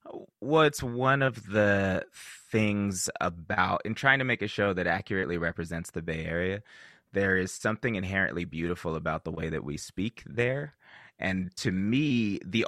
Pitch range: 85-110 Hz